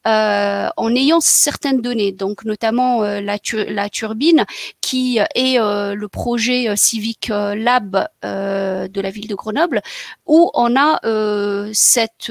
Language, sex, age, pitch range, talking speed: French, female, 40-59, 210-250 Hz, 150 wpm